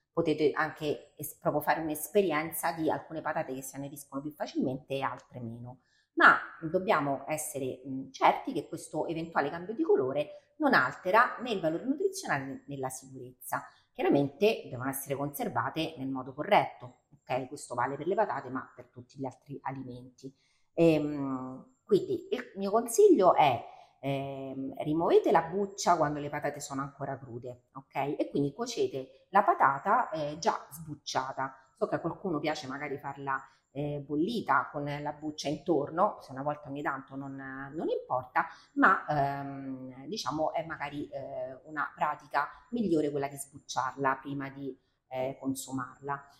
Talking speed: 155 wpm